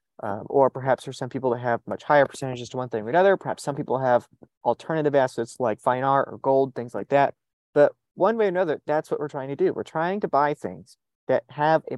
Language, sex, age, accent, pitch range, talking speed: English, male, 30-49, American, 125-160 Hz, 245 wpm